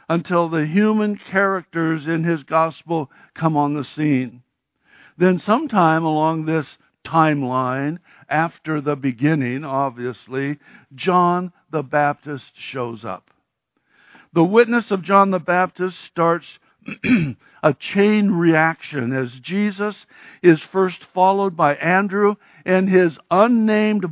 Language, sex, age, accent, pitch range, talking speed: English, male, 60-79, American, 155-195 Hz, 110 wpm